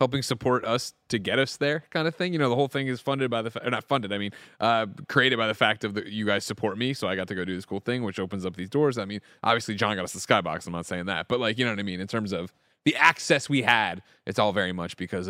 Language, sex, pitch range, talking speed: English, male, 100-130 Hz, 310 wpm